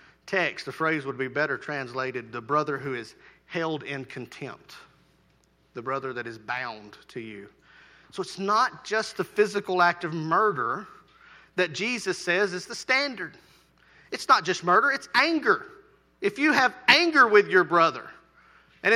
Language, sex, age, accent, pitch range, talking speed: English, male, 40-59, American, 170-250 Hz, 160 wpm